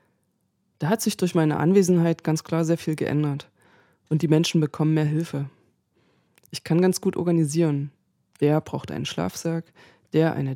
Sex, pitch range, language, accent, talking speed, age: female, 145-170 Hz, German, German, 160 wpm, 20-39